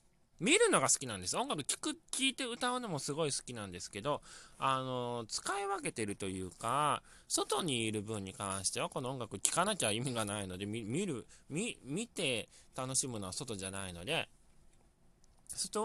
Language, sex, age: Japanese, male, 20-39